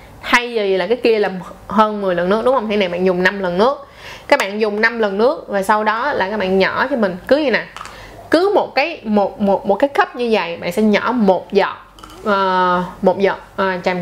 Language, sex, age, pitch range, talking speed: Vietnamese, female, 20-39, 190-245 Hz, 245 wpm